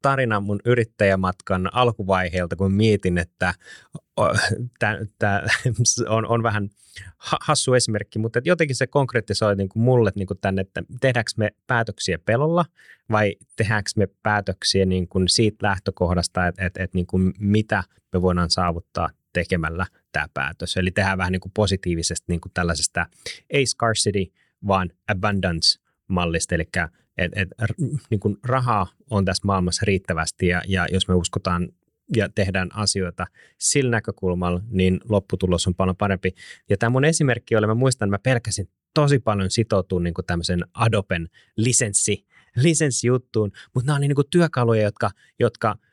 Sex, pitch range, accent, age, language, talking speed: male, 95-115 Hz, native, 20-39, Finnish, 140 wpm